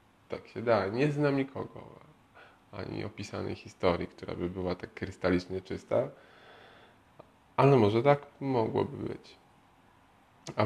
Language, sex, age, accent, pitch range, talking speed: Polish, male, 20-39, native, 90-110 Hz, 120 wpm